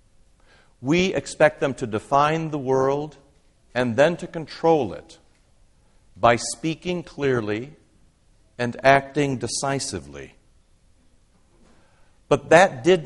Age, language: 60-79, English